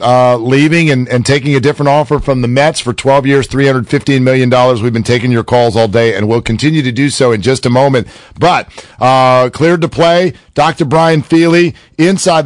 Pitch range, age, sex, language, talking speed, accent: 130-180 Hz, 50-69, male, English, 200 wpm, American